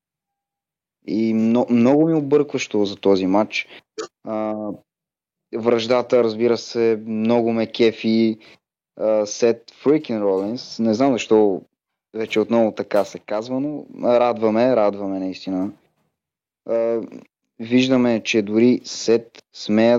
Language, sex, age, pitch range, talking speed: Bulgarian, male, 30-49, 105-130 Hz, 95 wpm